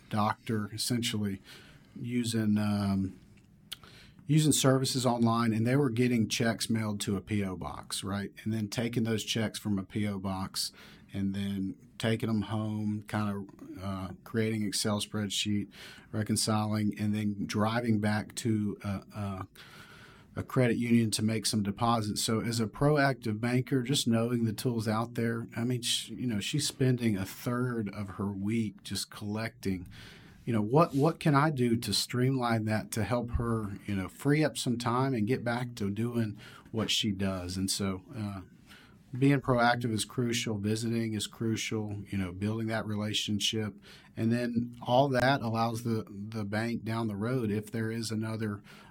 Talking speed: 165 wpm